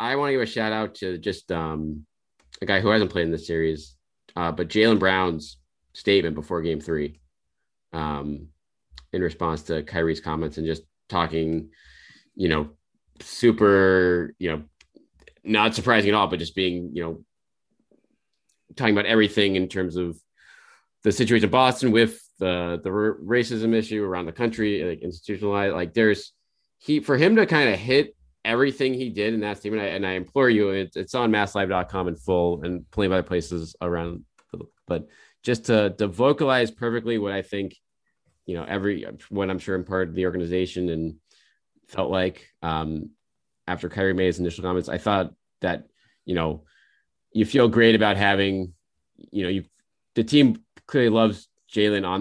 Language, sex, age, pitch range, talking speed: English, male, 30-49, 85-110 Hz, 175 wpm